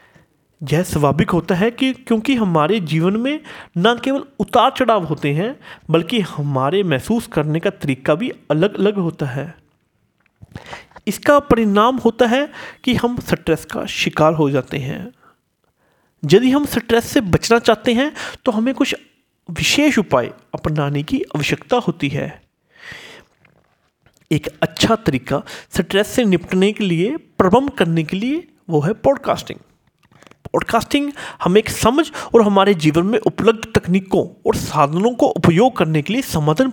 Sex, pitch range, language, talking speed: male, 160-245 Hz, Hindi, 145 wpm